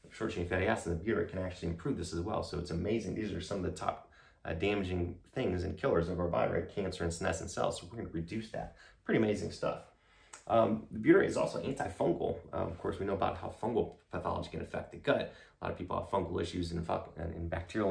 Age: 30-49